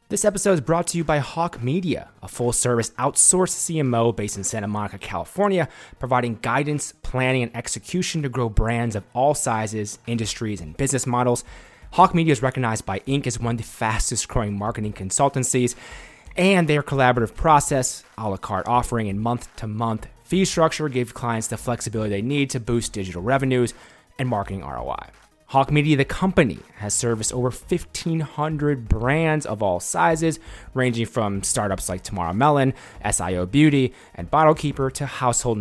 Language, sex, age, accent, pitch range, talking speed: English, male, 30-49, American, 105-150 Hz, 160 wpm